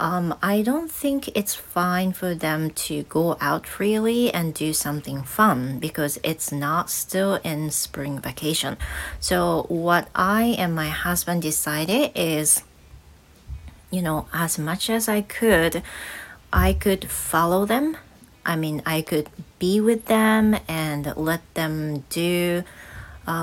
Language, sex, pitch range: Japanese, female, 150-185 Hz